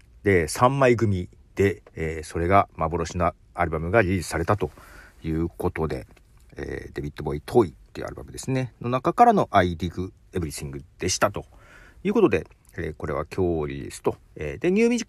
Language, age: Japanese, 40-59